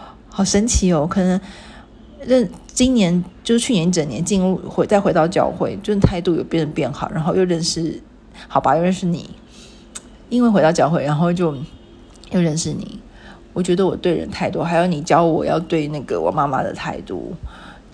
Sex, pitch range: female, 165-200 Hz